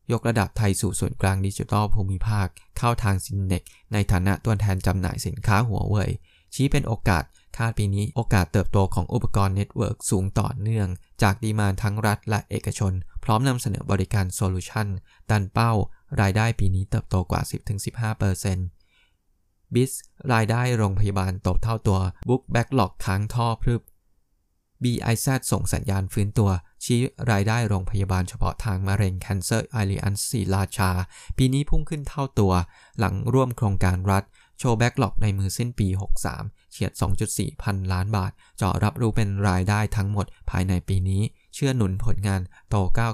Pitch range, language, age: 95-115 Hz, Thai, 20-39